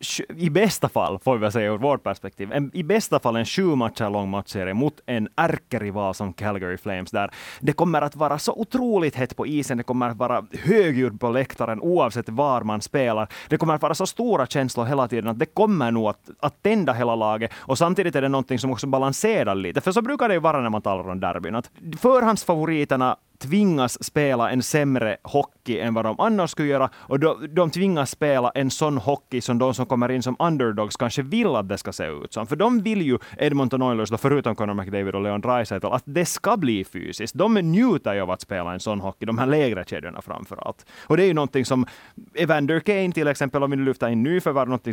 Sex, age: male, 30-49